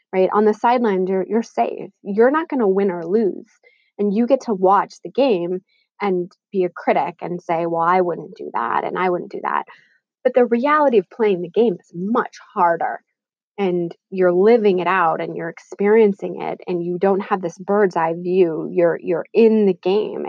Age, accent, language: 20-39, American, English